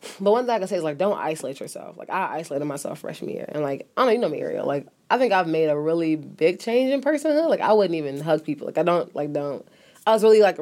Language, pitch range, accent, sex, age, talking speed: English, 150-190 Hz, American, female, 20-39, 295 wpm